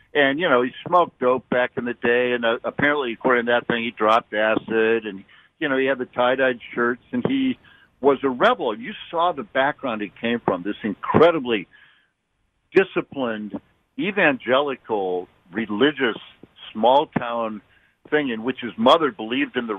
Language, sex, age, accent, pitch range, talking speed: English, male, 60-79, American, 110-130 Hz, 165 wpm